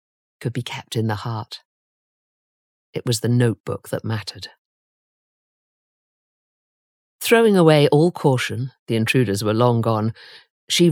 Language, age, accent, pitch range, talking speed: English, 50-69, British, 110-150 Hz, 120 wpm